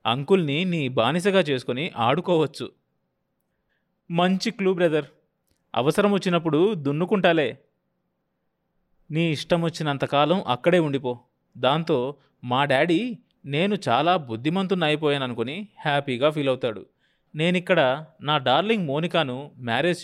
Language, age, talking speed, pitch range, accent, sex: Telugu, 30-49, 95 wpm, 140-185 Hz, native, male